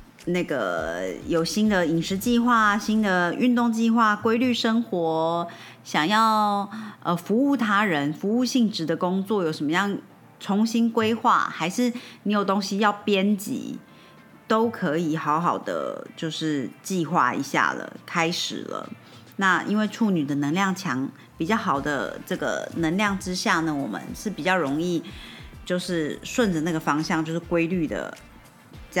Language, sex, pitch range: Chinese, female, 165-220 Hz